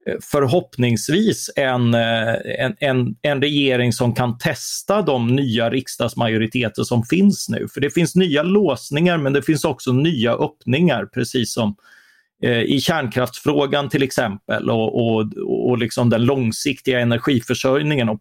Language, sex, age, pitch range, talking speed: Swedish, male, 30-49, 115-140 Hz, 130 wpm